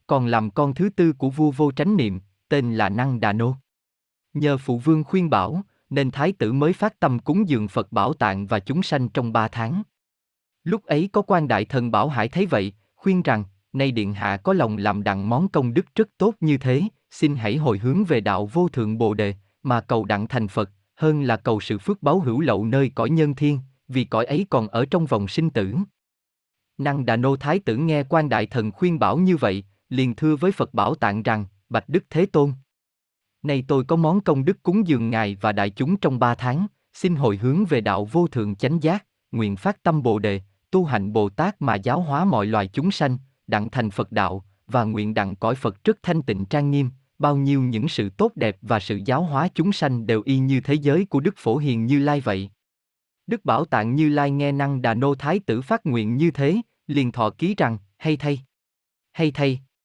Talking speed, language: 225 wpm, Vietnamese